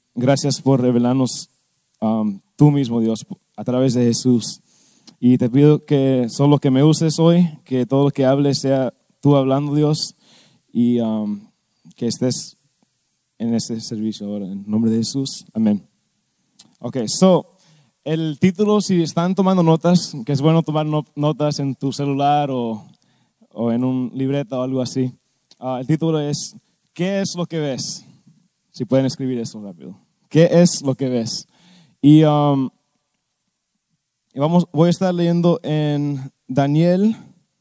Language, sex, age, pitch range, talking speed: Spanish, male, 20-39, 125-160 Hz, 155 wpm